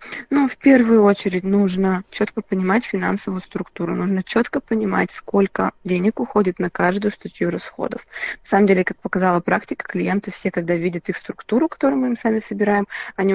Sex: female